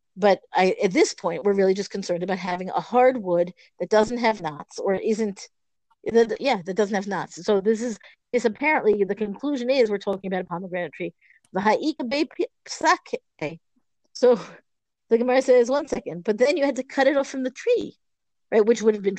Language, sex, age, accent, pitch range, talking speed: English, female, 50-69, American, 200-260 Hz, 200 wpm